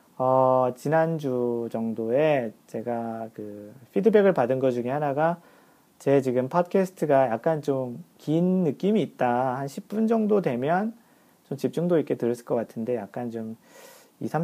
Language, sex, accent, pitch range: Korean, male, native, 120-155 Hz